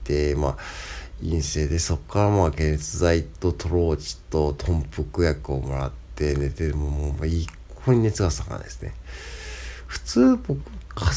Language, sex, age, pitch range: Japanese, male, 50-69, 75-90 Hz